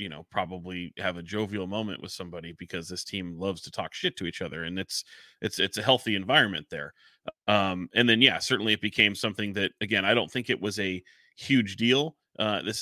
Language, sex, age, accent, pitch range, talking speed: English, male, 30-49, American, 95-110 Hz, 220 wpm